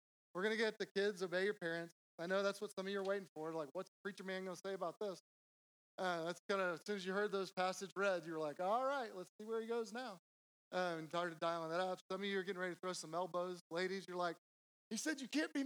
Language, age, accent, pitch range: English, 30-49, American, 165-200 Hz